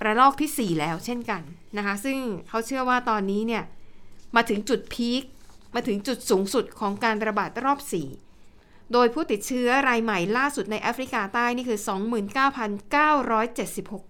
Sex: female